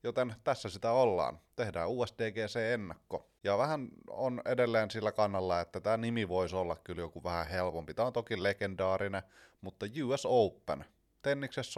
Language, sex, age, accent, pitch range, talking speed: Finnish, male, 30-49, native, 95-115 Hz, 150 wpm